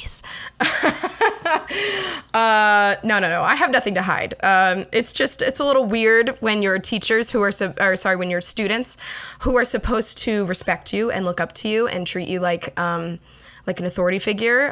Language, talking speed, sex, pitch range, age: English, 190 wpm, female, 180-245 Hz, 20-39